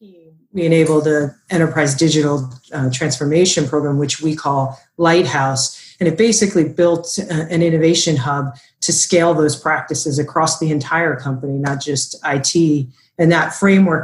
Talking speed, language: 145 wpm, English